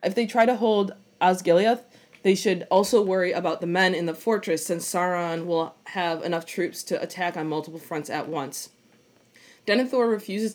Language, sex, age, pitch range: English, female, 20-39, 160-195 Hz